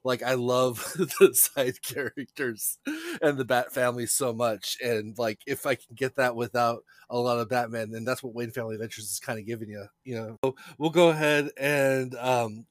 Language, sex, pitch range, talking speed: English, male, 120-140 Hz, 205 wpm